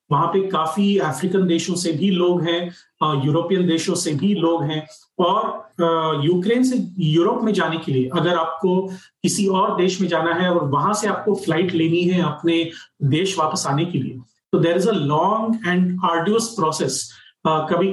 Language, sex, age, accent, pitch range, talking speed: Hindi, male, 40-59, native, 160-200 Hz, 175 wpm